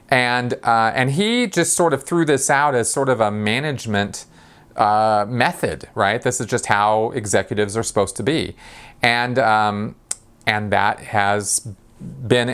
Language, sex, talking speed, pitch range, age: English, male, 160 wpm, 100-135 Hz, 40-59